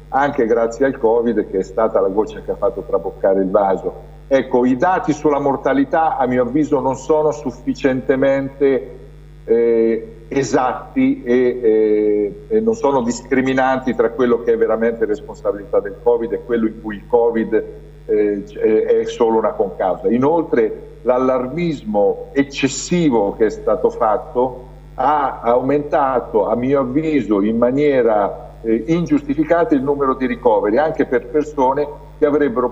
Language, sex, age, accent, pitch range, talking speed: Italian, male, 50-69, native, 120-160 Hz, 145 wpm